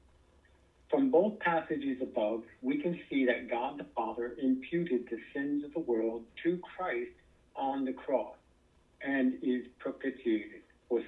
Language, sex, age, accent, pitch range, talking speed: English, male, 60-79, American, 110-140 Hz, 140 wpm